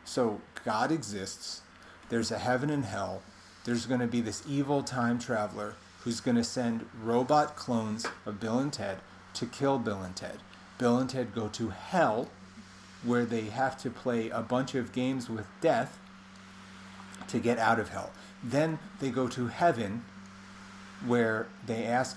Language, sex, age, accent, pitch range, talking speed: English, male, 40-59, American, 105-130 Hz, 160 wpm